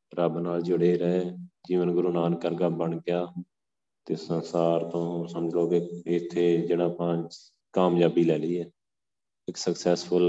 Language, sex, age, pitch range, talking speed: Punjabi, male, 30-49, 85-90 Hz, 140 wpm